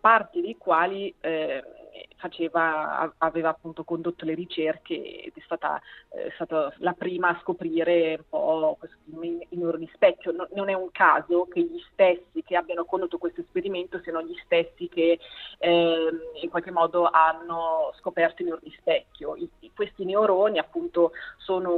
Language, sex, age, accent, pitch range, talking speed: Italian, female, 30-49, native, 165-235 Hz, 155 wpm